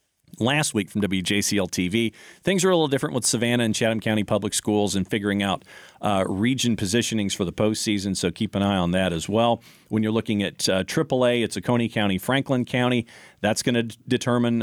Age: 40-59